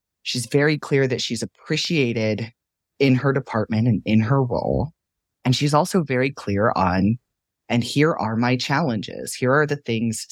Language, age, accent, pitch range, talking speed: English, 30-49, American, 110-145 Hz, 165 wpm